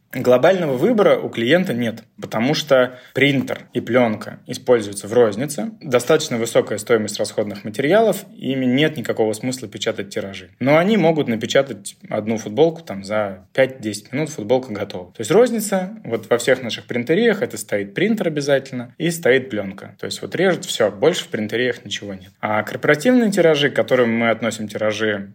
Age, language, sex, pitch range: 20-39, Russian, male, 105-135 Hz